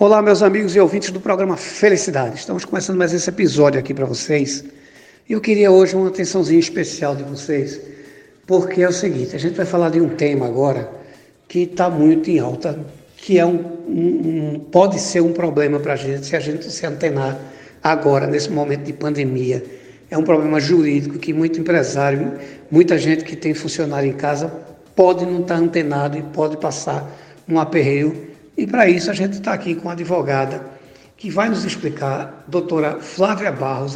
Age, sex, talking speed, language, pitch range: 60-79, male, 175 wpm, Portuguese, 145-185 Hz